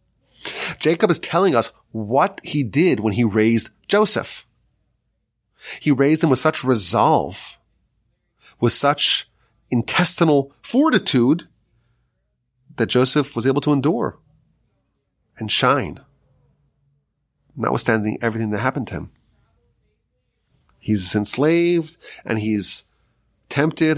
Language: English